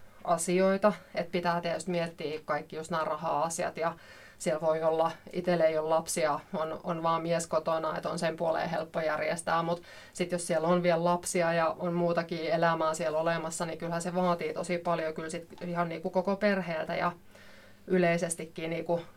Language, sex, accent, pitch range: Finnish, female, native, 165-185 Hz